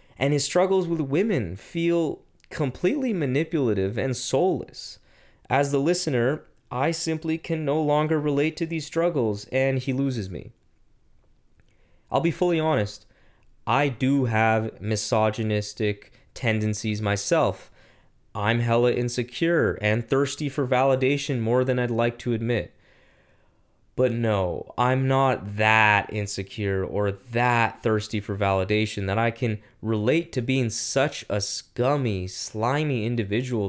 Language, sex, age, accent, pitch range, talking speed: English, male, 20-39, American, 105-135 Hz, 125 wpm